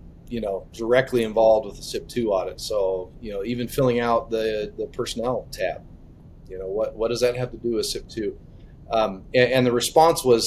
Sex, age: male, 30-49